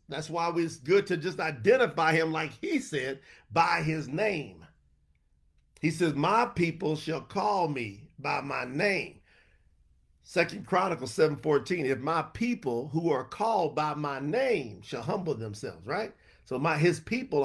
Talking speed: 155 wpm